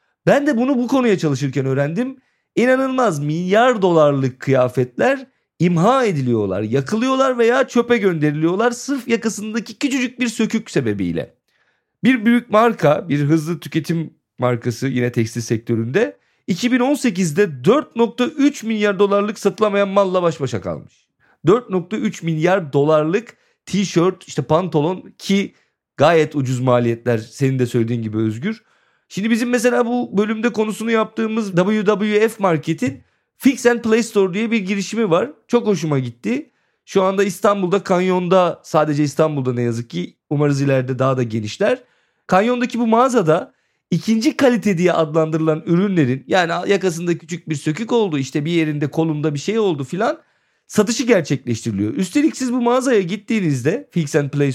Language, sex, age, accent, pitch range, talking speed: Turkish, male, 40-59, native, 150-230 Hz, 135 wpm